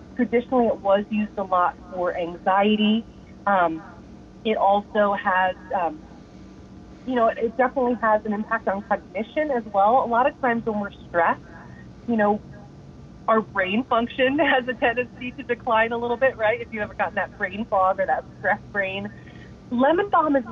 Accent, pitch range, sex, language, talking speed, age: American, 200-245 Hz, female, English, 175 wpm, 30-49